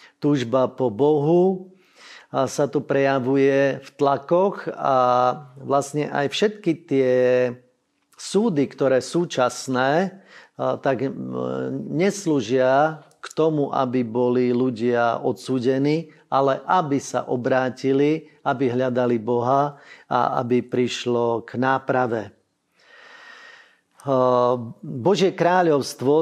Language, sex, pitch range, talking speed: Slovak, male, 125-150 Hz, 90 wpm